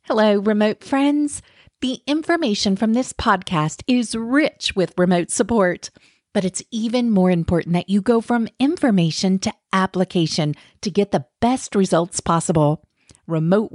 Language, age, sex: English, 40-59, female